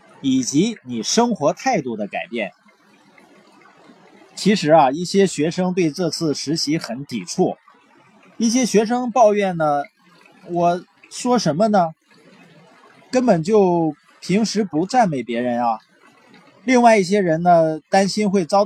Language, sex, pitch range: Chinese, male, 150-210 Hz